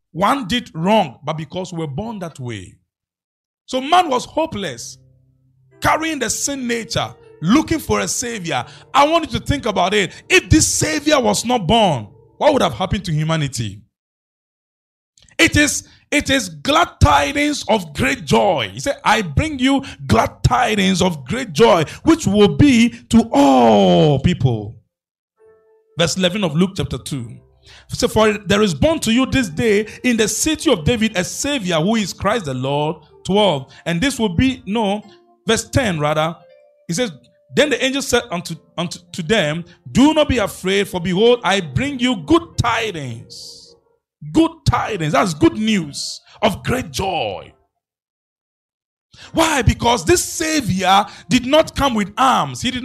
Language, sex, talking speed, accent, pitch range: English, male, 160 wpm, Nigerian, 160-270 Hz